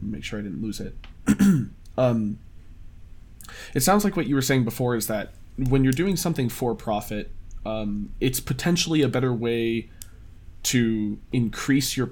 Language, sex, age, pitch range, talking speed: English, male, 20-39, 105-130 Hz, 160 wpm